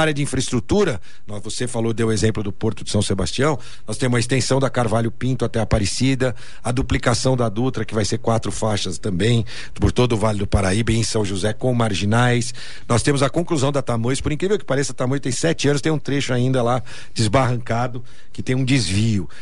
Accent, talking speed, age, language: Brazilian, 205 wpm, 50-69, Portuguese